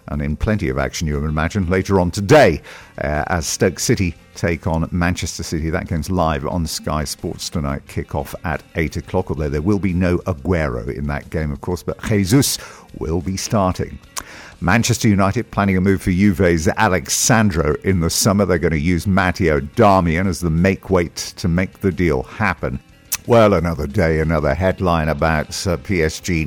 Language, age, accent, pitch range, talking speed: English, 50-69, British, 80-100 Hz, 180 wpm